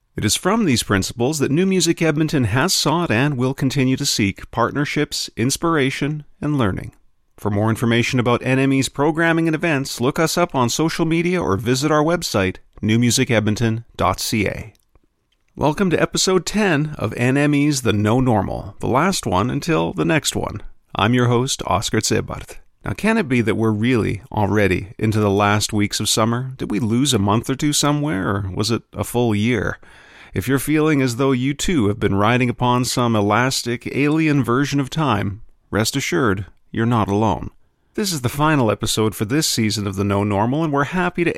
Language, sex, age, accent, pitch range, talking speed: English, male, 40-59, American, 110-145 Hz, 185 wpm